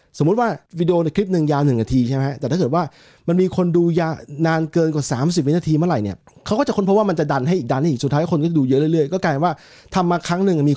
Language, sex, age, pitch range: Thai, male, 20-39, 140-180 Hz